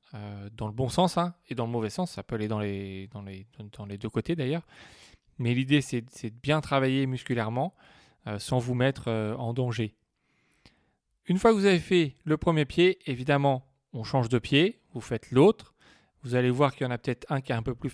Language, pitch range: French, 120-155 Hz